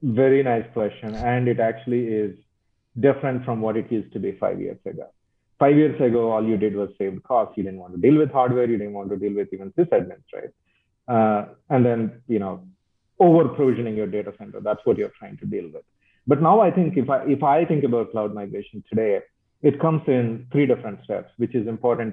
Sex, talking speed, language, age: male, 215 wpm, English, 40-59